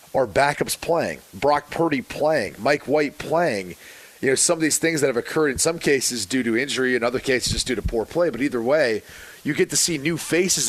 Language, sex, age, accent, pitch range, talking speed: English, male, 30-49, American, 125-155 Hz, 230 wpm